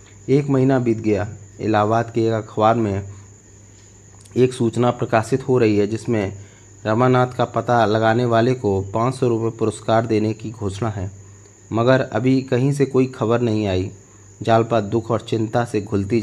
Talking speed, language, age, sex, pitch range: 160 wpm, Hindi, 30-49, male, 100-120 Hz